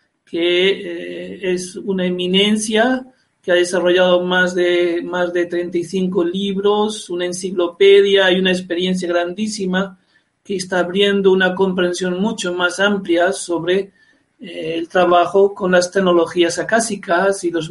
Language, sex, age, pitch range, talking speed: Spanish, male, 50-69, 180-215 Hz, 130 wpm